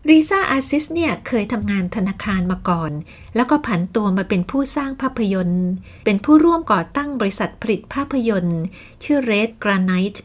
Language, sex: Thai, female